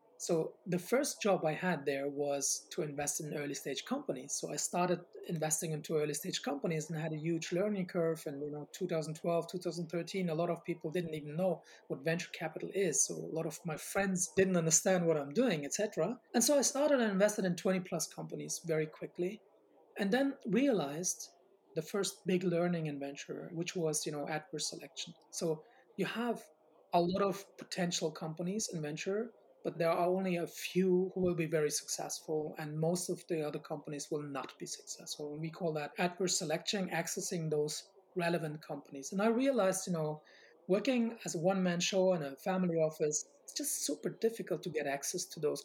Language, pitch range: English, 155-195 Hz